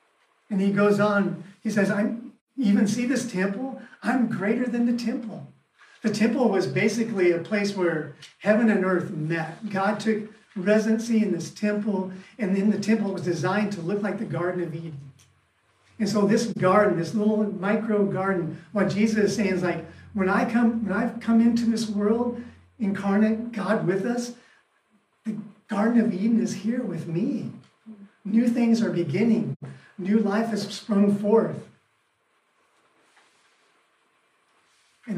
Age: 40-59